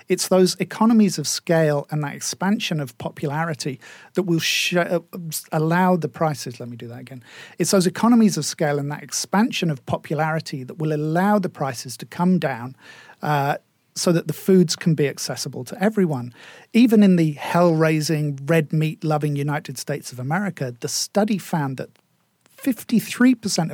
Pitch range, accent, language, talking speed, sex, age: 145-180 Hz, British, English, 160 wpm, male, 50-69